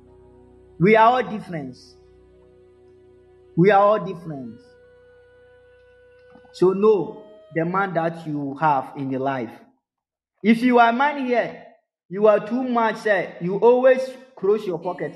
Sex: male